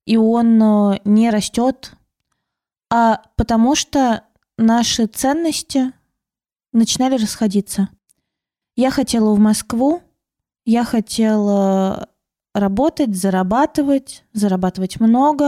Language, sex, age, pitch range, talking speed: Russian, female, 20-39, 205-265 Hz, 80 wpm